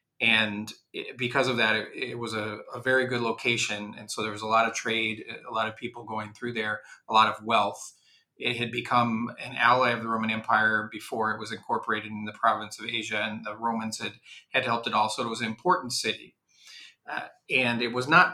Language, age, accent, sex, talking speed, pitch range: English, 40-59, American, male, 220 wpm, 110-125 Hz